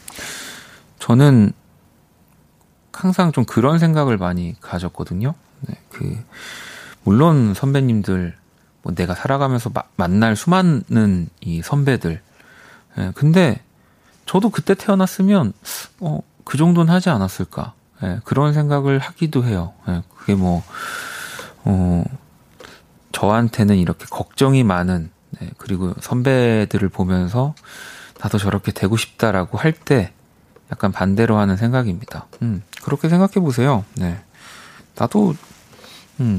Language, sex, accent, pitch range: Korean, male, native, 95-140 Hz